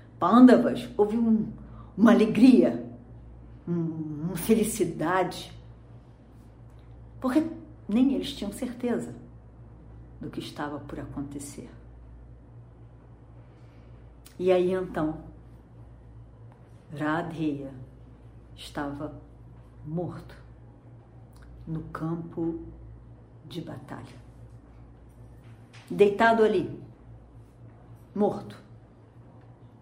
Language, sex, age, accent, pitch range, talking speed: Portuguese, female, 50-69, Brazilian, 120-180 Hz, 60 wpm